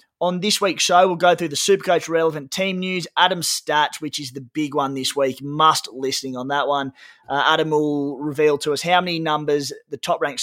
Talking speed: 215 wpm